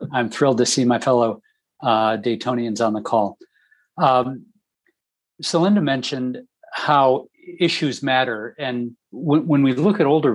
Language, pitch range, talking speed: English, 120-140 Hz, 145 wpm